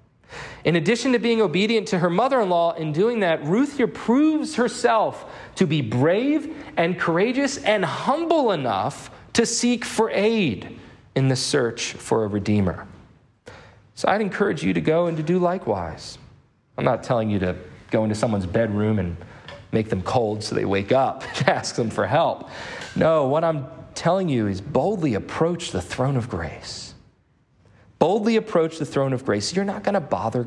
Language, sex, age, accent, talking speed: English, male, 40-59, American, 175 wpm